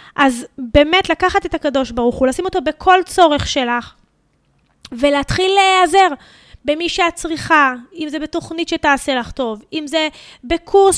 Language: Hebrew